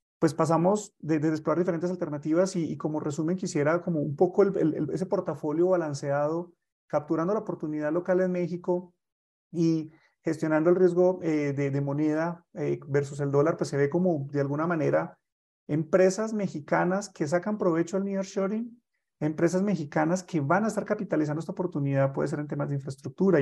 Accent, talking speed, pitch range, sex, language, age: Colombian, 170 wpm, 145-175 Hz, male, Spanish, 30-49